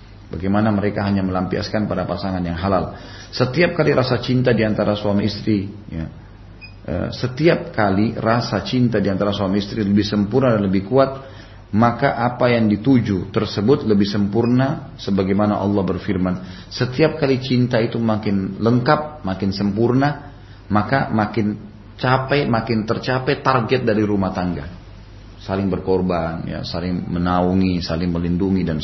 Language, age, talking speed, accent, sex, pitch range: Indonesian, 30-49, 130 wpm, native, male, 95-115 Hz